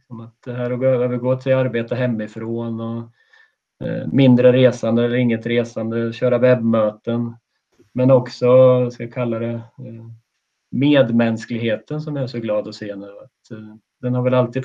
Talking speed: 145 wpm